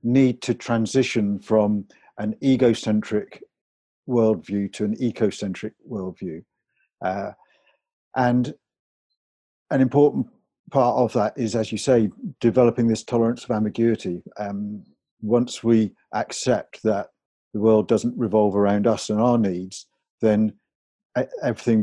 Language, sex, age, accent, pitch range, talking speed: English, male, 50-69, British, 105-120 Hz, 120 wpm